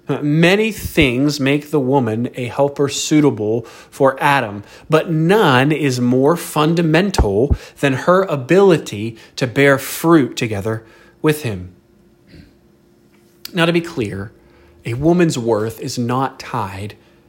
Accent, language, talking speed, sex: American, English, 120 wpm, male